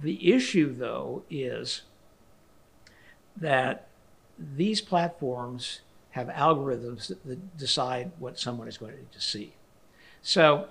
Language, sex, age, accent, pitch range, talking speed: English, male, 60-79, American, 130-170 Hz, 100 wpm